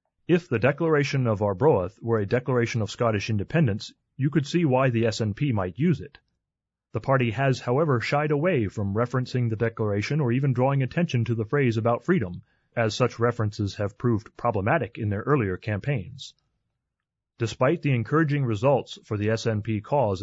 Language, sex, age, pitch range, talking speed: English, male, 30-49, 110-140 Hz, 170 wpm